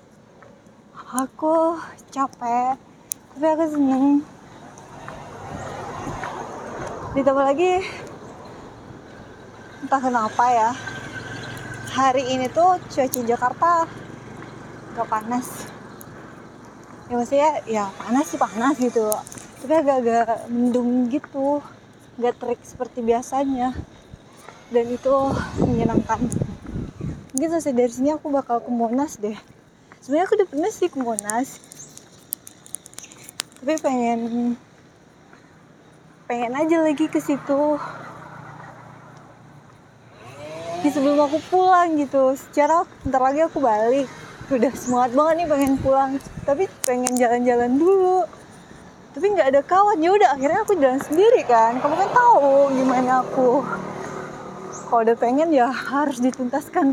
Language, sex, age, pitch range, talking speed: Indonesian, female, 20-39, 235-295 Hz, 105 wpm